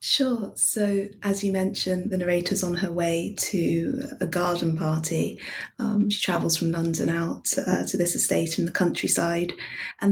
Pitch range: 165-195 Hz